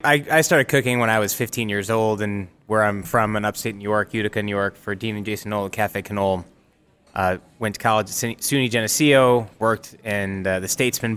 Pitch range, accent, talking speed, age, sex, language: 105-120 Hz, American, 220 wpm, 20-39, male, English